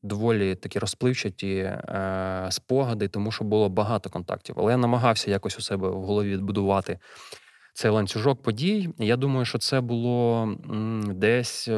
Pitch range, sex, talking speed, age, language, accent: 100-115 Hz, male, 150 wpm, 20-39, Ukrainian, native